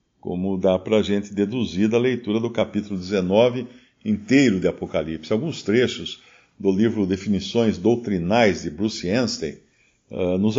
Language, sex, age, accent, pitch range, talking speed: Portuguese, male, 50-69, Brazilian, 100-140 Hz, 135 wpm